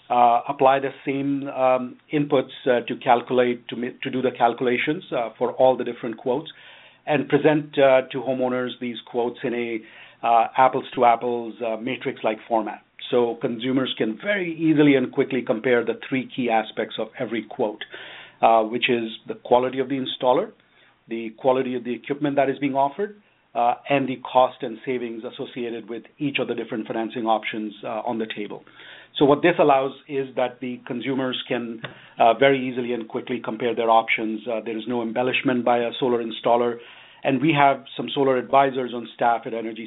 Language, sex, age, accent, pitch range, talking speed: English, male, 50-69, Indian, 115-135 Hz, 185 wpm